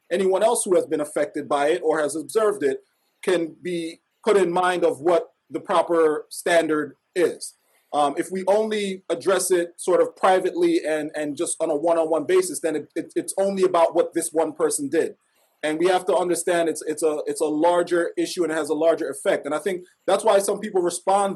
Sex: male